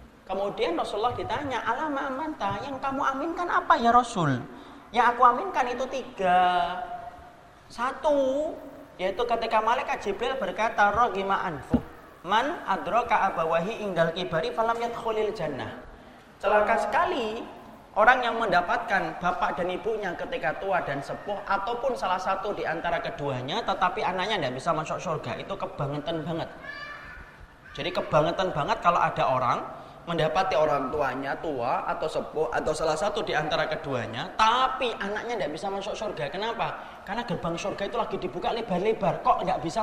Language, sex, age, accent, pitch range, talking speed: Indonesian, male, 30-49, native, 165-240 Hz, 140 wpm